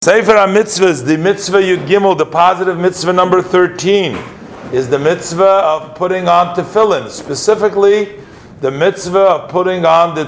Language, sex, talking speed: English, male, 145 wpm